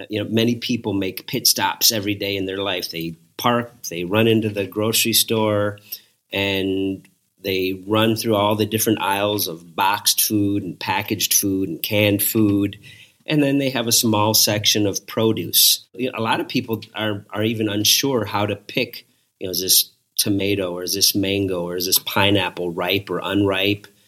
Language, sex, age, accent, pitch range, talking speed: English, male, 40-59, American, 95-115 Hz, 185 wpm